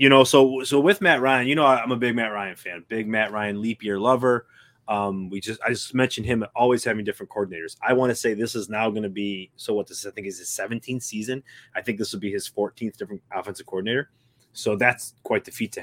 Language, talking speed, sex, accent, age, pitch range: English, 255 wpm, male, American, 20-39, 120-155 Hz